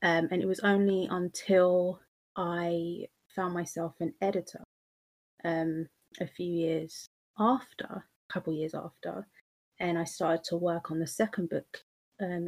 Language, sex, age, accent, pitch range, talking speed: English, female, 30-49, British, 165-190 Hz, 145 wpm